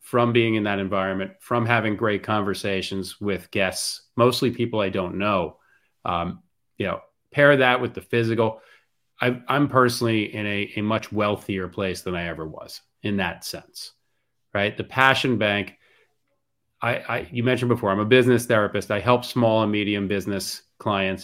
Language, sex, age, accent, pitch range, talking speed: English, male, 30-49, American, 100-120 Hz, 170 wpm